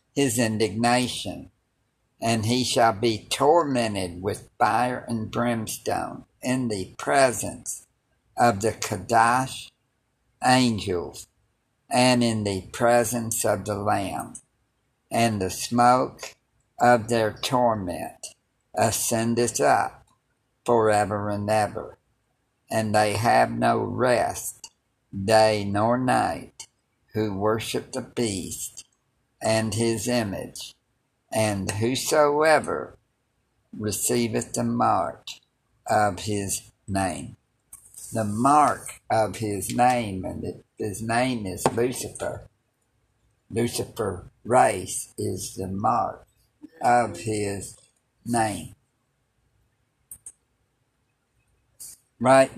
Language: English